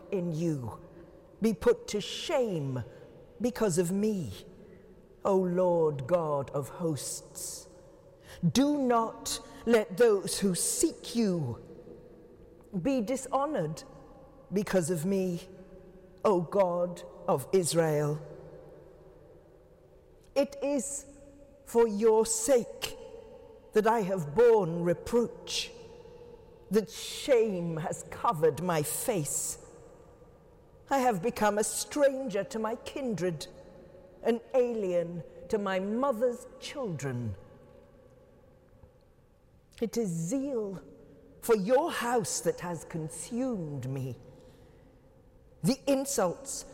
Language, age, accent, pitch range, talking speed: English, 50-69, British, 170-250 Hz, 90 wpm